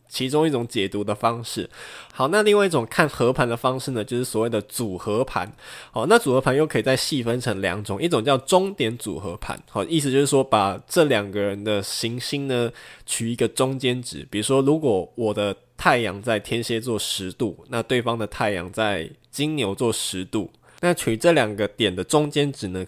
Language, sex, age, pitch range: Chinese, male, 20-39, 105-135 Hz